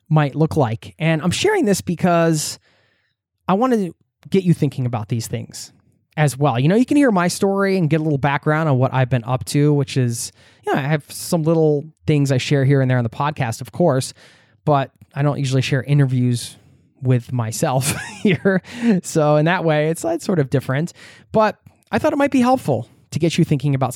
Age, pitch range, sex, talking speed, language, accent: 20-39, 120-155 Hz, male, 215 wpm, English, American